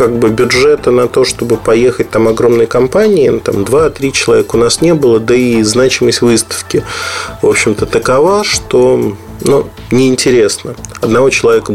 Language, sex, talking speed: Russian, male, 150 wpm